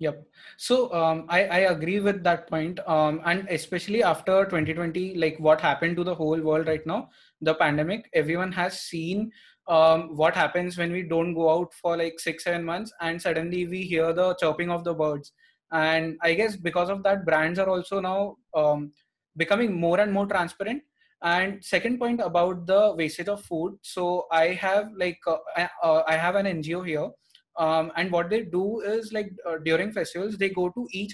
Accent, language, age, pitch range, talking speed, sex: native, Hindi, 20-39, 165-195 Hz, 195 wpm, male